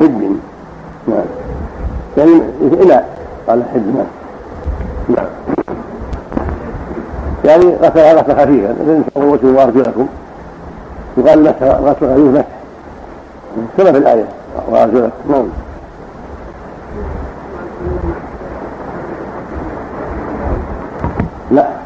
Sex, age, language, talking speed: male, 60-79, Arabic, 60 wpm